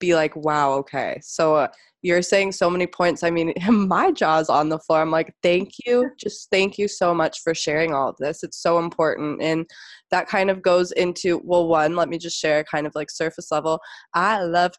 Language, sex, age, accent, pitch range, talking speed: English, female, 20-39, American, 165-195 Hz, 220 wpm